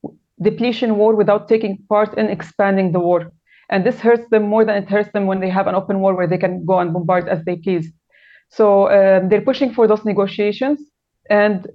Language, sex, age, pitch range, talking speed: English, female, 30-49, 190-225 Hz, 210 wpm